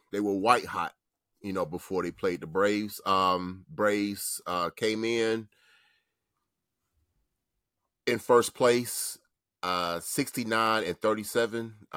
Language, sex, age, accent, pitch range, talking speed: English, male, 30-49, American, 95-115 Hz, 105 wpm